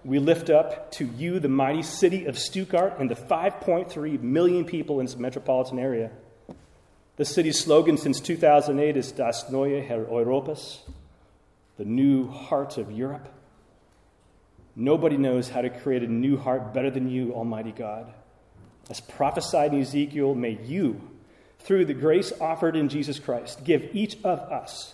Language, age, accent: English, 30-49, American